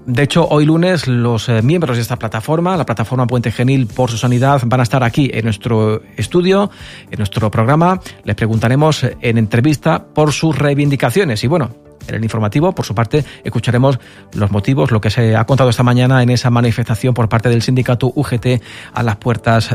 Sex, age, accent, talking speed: male, 40-59, Spanish, 190 wpm